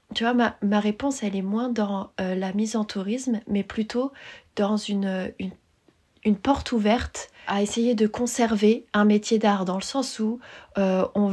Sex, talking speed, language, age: female, 185 wpm, French, 30-49